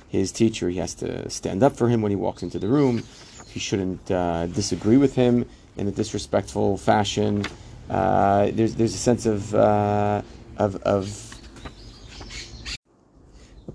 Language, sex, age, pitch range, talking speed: English, male, 30-49, 100-120 Hz, 155 wpm